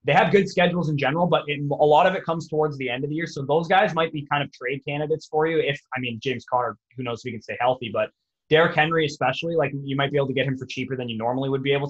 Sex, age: male, 20-39